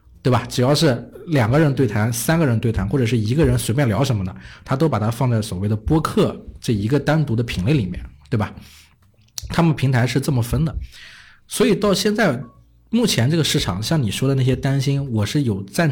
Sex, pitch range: male, 115-155 Hz